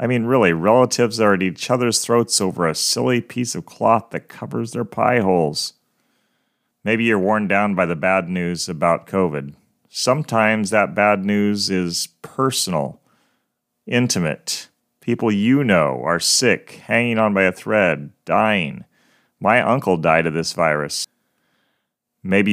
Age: 40-59